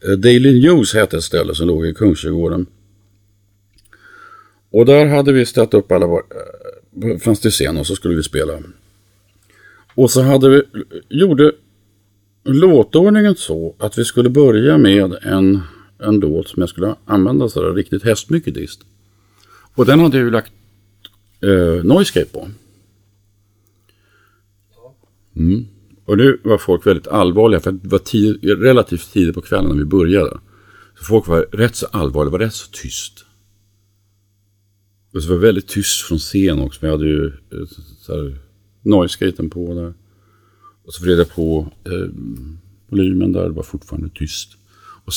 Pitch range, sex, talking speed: 95-115 Hz, male, 150 wpm